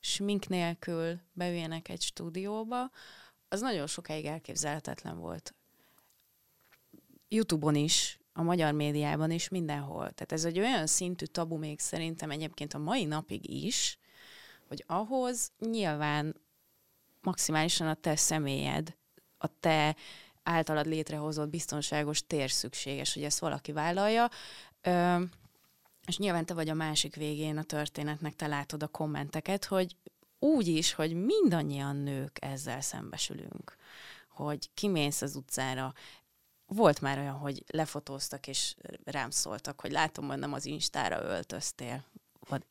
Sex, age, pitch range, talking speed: female, 30-49, 150-175 Hz, 125 wpm